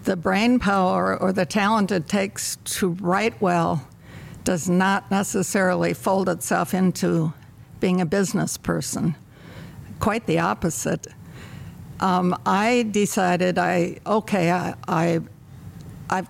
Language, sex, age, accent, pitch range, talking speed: English, female, 60-79, American, 175-200 Hz, 120 wpm